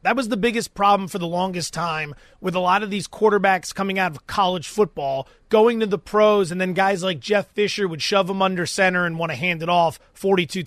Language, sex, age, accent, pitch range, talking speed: English, male, 30-49, American, 185-230 Hz, 235 wpm